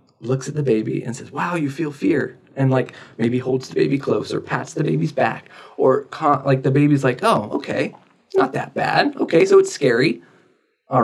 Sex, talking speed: male, 200 wpm